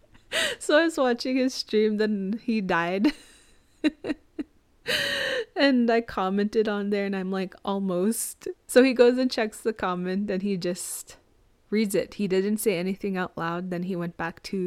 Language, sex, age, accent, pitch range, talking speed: English, female, 20-39, American, 180-220 Hz, 170 wpm